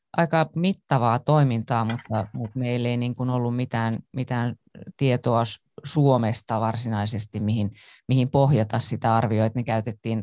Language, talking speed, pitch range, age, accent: Finnish, 125 wpm, 115-130 Hz, 30-49, native